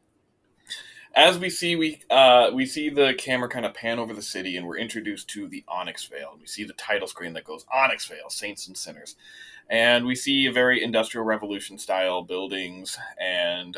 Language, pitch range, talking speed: English, 105-160 Hz, 185 wpm